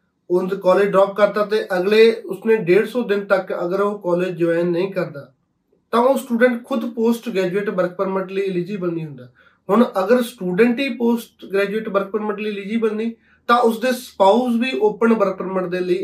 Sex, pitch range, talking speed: male, 180-220 Hz, 185 wpm